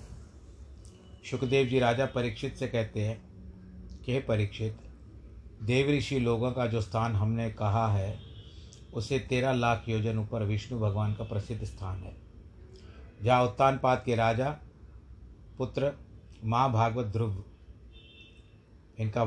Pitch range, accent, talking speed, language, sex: 105-130 Hz, native, 120 wpm, Hindi, male